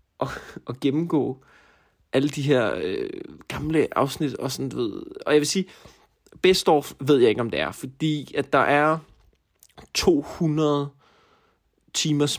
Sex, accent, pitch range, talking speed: male, native, 130-165 Hz, 140 wpm